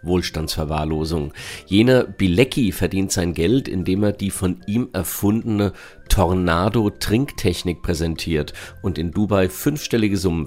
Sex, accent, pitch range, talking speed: male, German, 80-105 Hz, 110 wpm